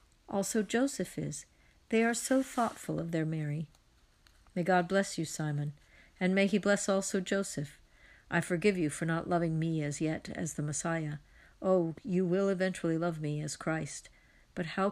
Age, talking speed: 60-79, 175 wpm